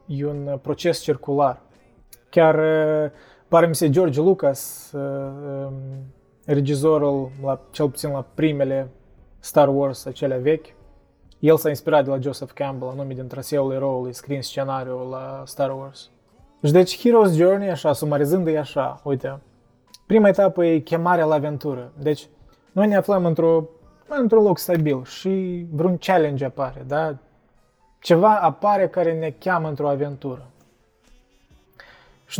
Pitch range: 135-165 Hz